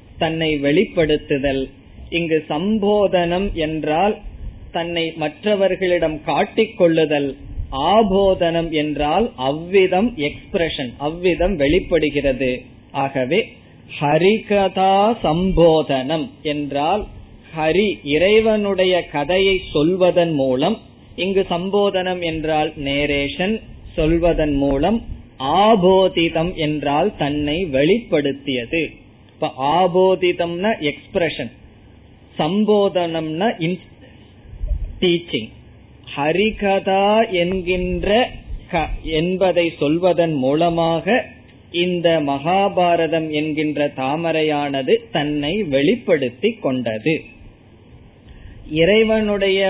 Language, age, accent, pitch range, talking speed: Tamil, 20-39, native, 145-185 Hz, 55 wpm